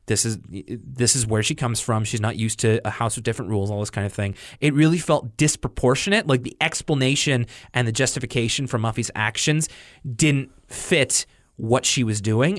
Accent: American